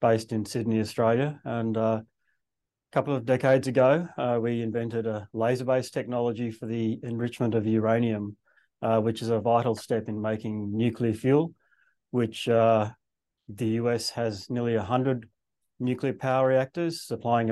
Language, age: English, 30-49